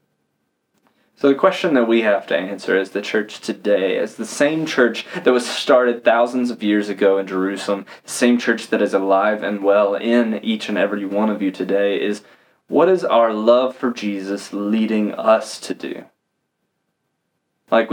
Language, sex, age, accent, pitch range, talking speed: English, male, 20-39, American, 105-125 Hz, 175 wpm